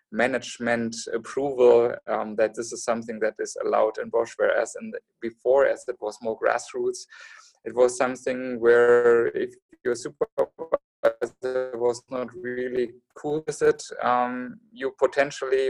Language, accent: English, German